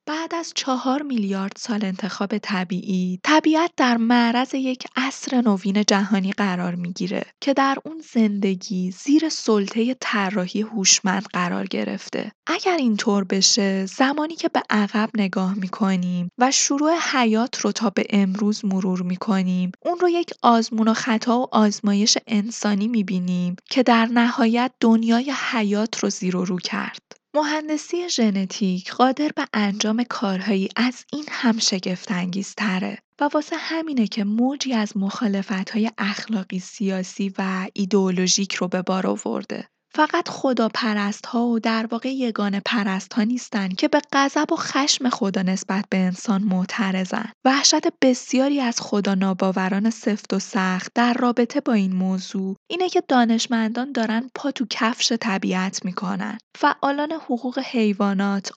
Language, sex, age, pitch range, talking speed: Persian, female, 10-29, 195-255 Hz, 135 wpm